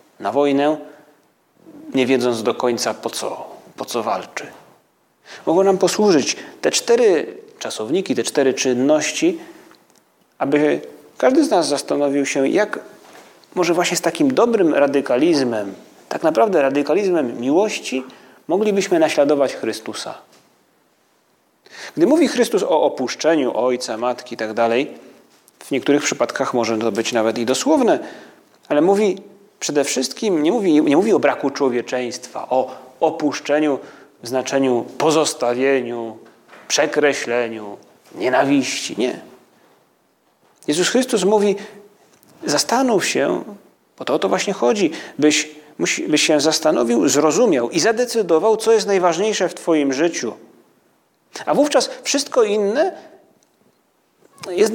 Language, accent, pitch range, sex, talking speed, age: Polish, native, 130-210 Hz, male, 115 wpm, 30-49